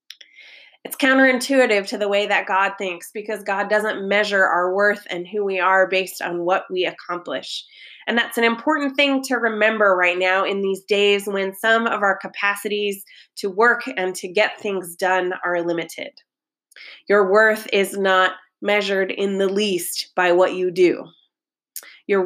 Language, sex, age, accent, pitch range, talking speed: English, female, 20-39, American, 185-215 Hz, 165 wpm